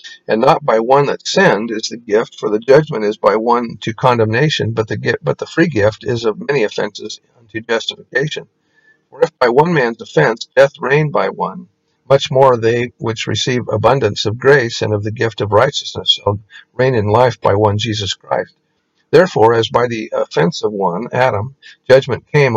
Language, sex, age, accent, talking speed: English, male, 50-69, American, 195 wpm